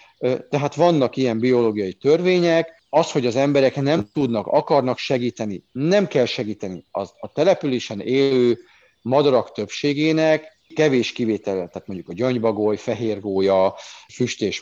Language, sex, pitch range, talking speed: Hungarian, male, 105-140 Hz, 125 wpm